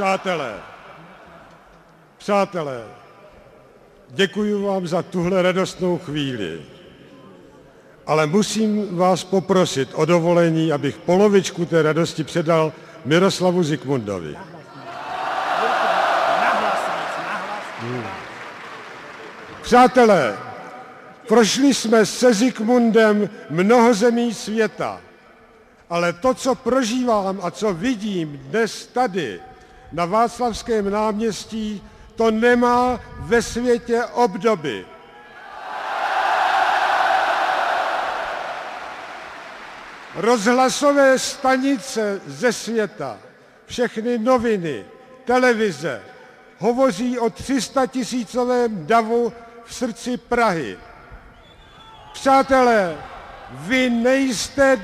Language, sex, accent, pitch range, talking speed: Czech, male, native, 185-255 Hz, 70 wpm